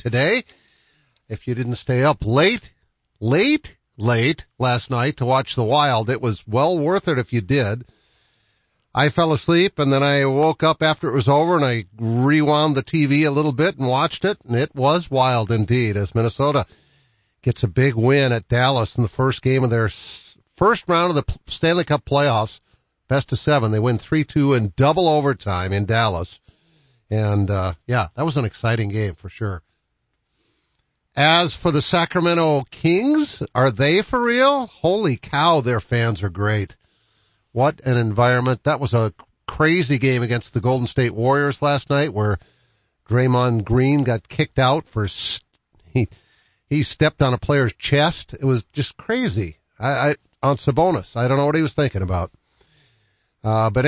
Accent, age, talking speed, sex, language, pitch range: American, 50-69, 175 wpm, male, English, 115-145 Hz